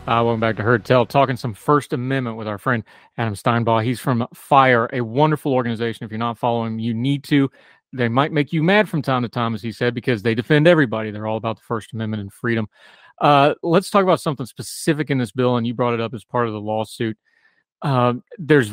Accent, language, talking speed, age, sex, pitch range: American, English, 235 wpm, 30-49, male, 115-140 Hz